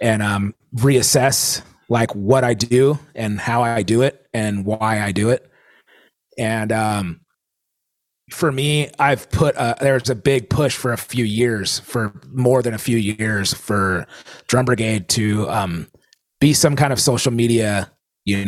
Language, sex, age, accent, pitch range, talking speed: English, male, 30-49, American, 105-130 Hz, 160 wpm